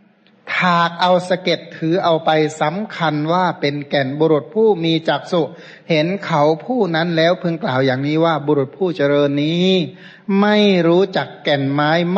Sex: male